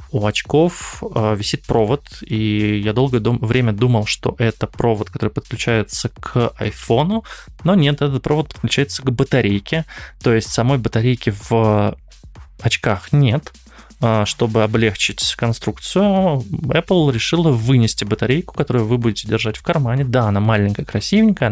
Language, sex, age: Russian, male, 20-39